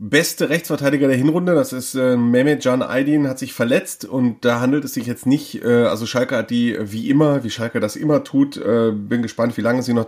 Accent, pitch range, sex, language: German, 120-145 Hz, male, German